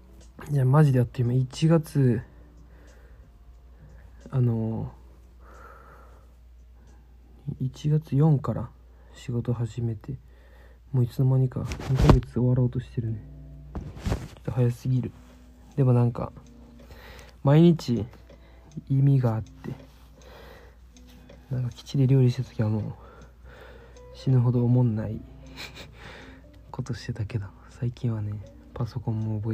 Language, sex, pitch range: Japanese, male, 100-135 Hz